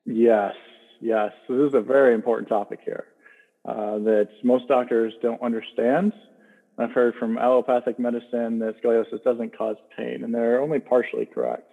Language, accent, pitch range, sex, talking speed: English, American, 120-145 Hz, male, 160 wpm